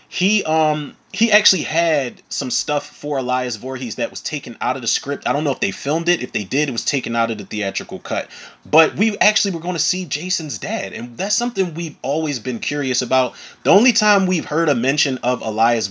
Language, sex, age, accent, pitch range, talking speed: English, male, 30-49, American, 130-200 Hz, 230 wpm